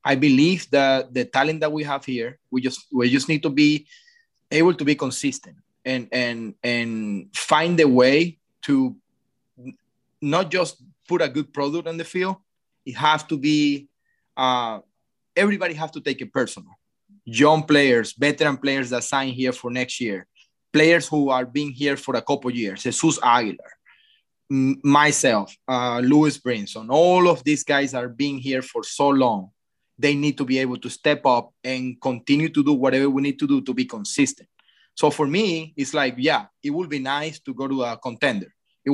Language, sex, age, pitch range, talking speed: English, male, 30-49, 130-155 Hz, 185 wpm